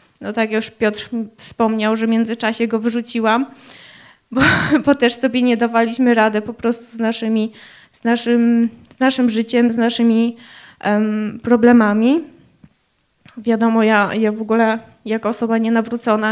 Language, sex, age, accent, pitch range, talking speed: Polish, female, 20-39, native, 225-250 Hz, 140 wpm